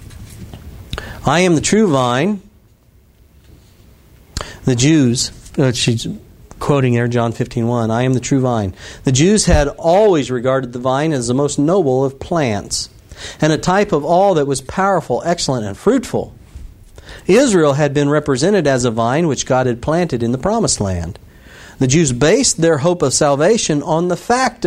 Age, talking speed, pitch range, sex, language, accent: 50-69, 165 wpm, 105-160 Hz, male, English, American